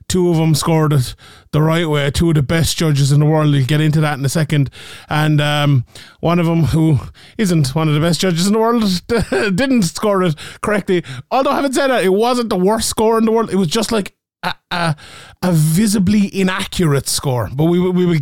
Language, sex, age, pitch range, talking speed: English, male, 20-39, 155-195 Hz, 230 wpm